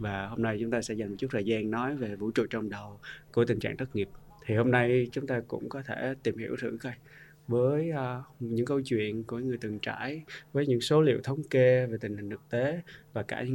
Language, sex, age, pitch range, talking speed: Vietnamese, male, 20-39, 110-135 Hz, 250 wpm